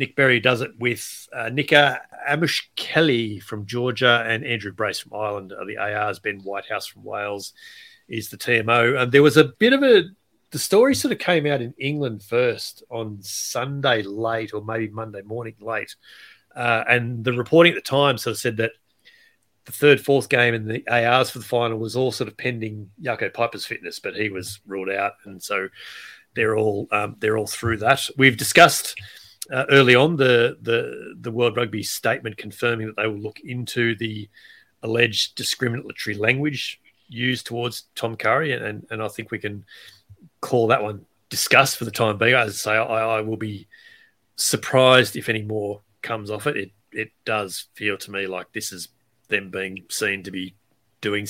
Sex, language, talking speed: male, English, 190 wpm